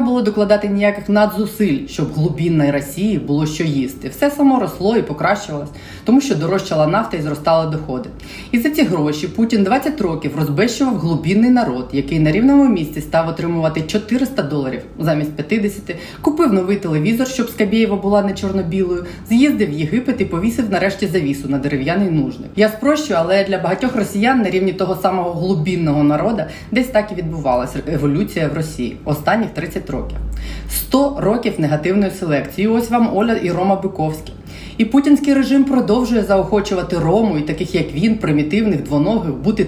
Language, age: Ukrainian, 30-49